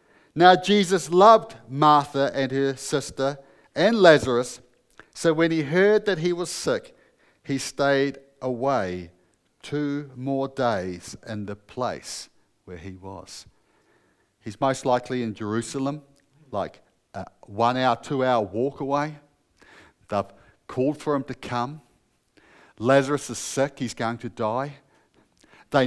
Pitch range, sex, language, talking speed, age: 115-160 Hz, male, English, 125 wpm, 50-69